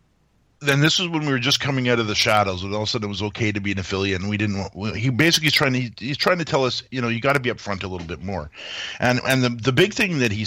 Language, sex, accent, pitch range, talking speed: English, male, American, 105-140 Hz, 320 wpm